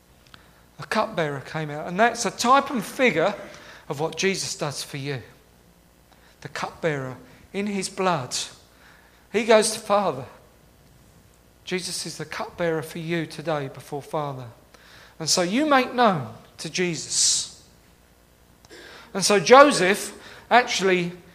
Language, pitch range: English, 155-245 Hz